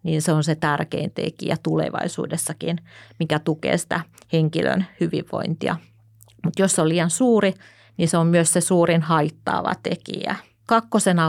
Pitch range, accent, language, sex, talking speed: 150-170 Hz, native, Finnish, female, 145 wpm